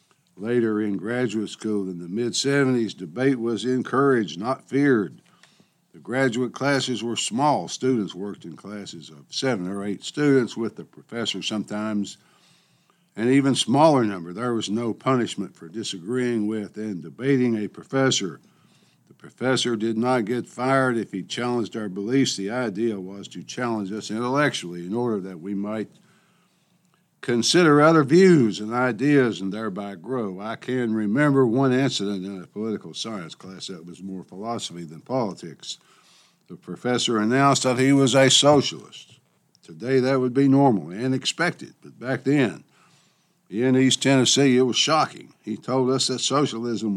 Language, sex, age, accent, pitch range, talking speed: English, male, 60-79, American, 105-135 Hz, 155 wpm